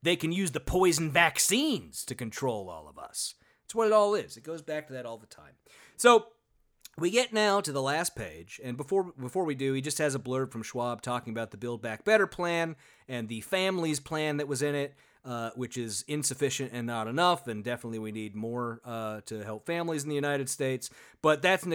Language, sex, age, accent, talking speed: English, male, 30-49, American, 225 wpm